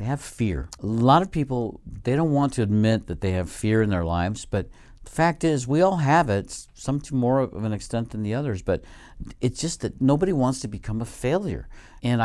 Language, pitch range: English, 95-135 Hz